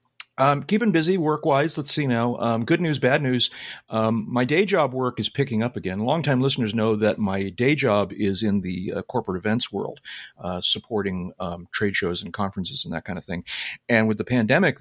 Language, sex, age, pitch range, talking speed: English, male, 40-59, 95-125 Hz, 205 wpm